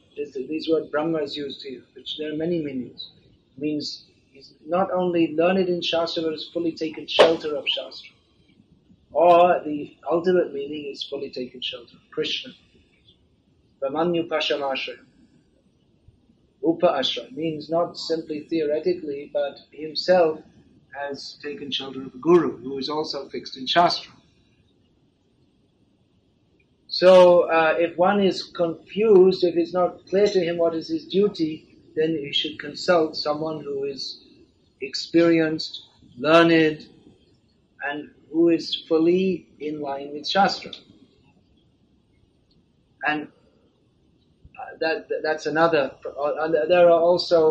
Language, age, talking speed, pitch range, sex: English, 50-69, 130 wpm, 145-170 Hz, male